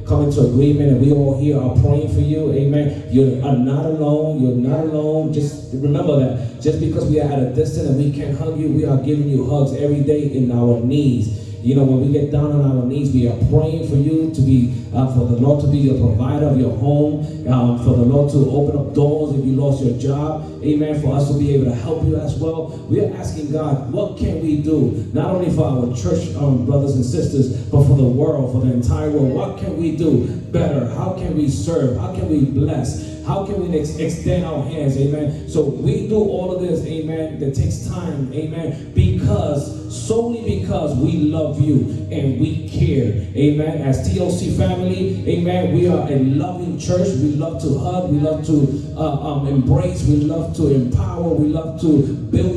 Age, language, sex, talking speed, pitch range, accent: 30-49, English, male, 215 wpm, 125-150 Hz, American